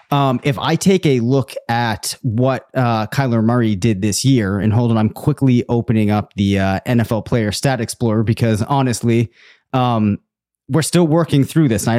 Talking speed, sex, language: 180 wpm, male, English